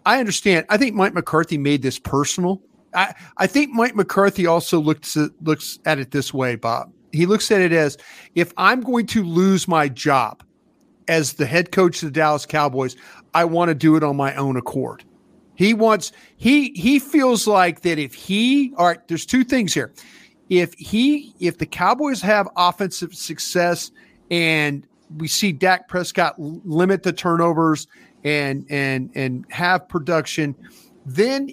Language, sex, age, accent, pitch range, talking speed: English, male, 50-69, American, 150-195 Hz, 175 wpm